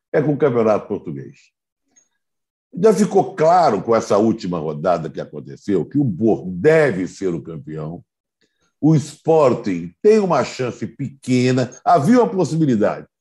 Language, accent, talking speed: Portuguese, Brazilian, 135 wpm